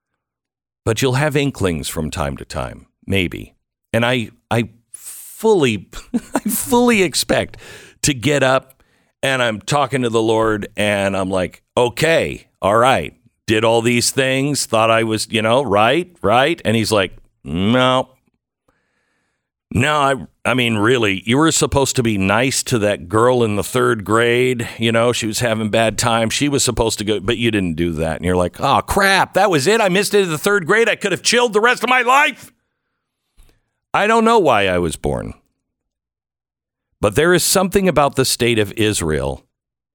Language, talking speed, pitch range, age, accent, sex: English, 185 wpm, 100-140 Hz, 50-69, American, male